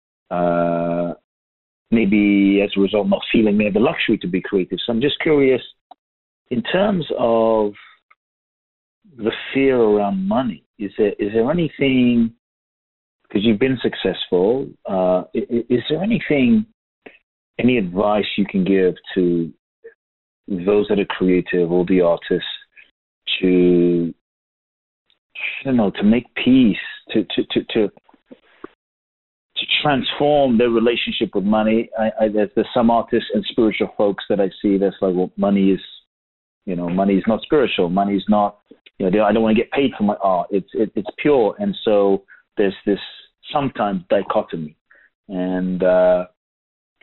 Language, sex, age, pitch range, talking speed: English, male, 40-59, 90-115 Hz, 145 wpm